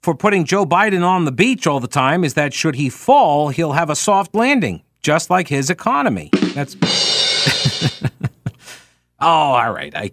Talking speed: 170 wpm